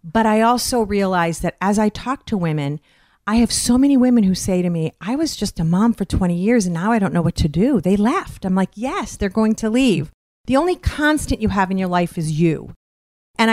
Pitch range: 175-225 Hz